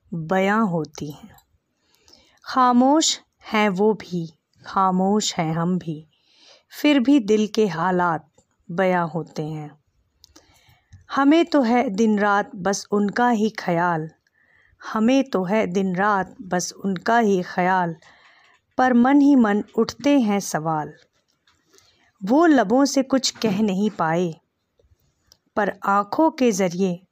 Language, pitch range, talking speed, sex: Hindi, 180-245 Hz, 120 wpm, female